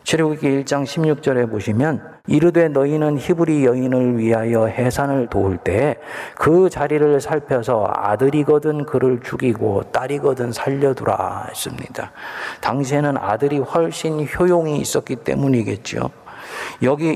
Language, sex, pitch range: Korean, male, 115-150 Hz